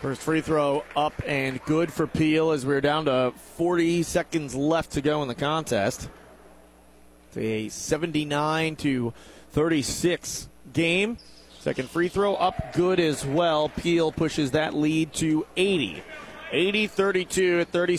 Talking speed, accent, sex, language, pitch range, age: 140 wpm, American, male, English, 150-190 Hz, 30-49